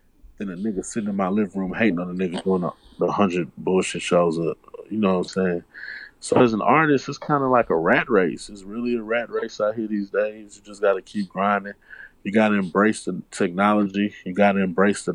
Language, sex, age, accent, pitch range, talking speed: English, male, 20-39, American, 95-115 Hz, 240 wpm